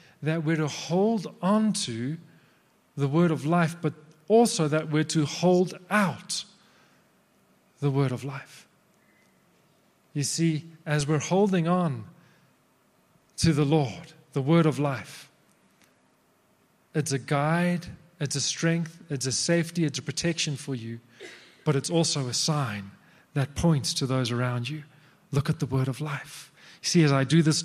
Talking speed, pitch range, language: 155 wpm, 130-165 Hz, English